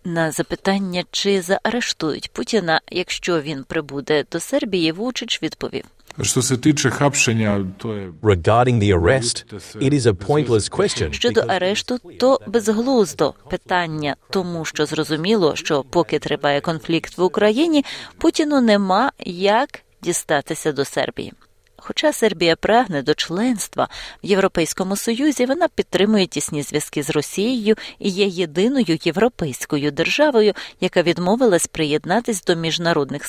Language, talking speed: Ukrainian, 105 wpm